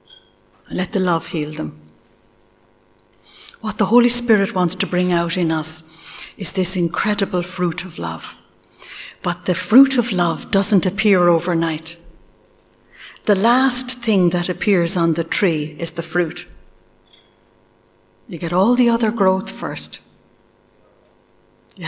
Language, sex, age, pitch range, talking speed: English, female, 60-79, 170-220 Hz, 130 wpm